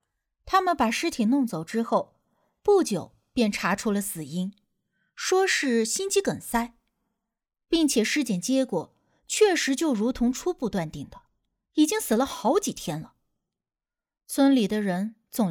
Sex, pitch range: female, 195-295 Hz